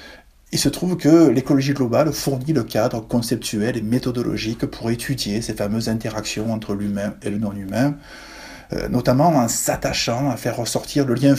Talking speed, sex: 160 wpm, male